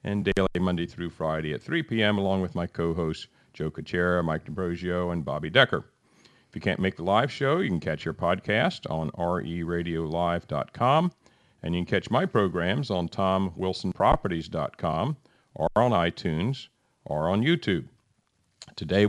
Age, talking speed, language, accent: 50-69, 150 wpm, English, American